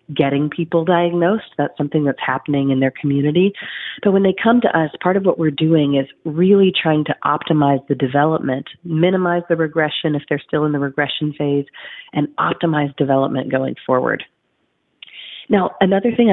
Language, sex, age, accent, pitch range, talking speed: English, female, 40-59, American, 135-165 Hz, 170 wpm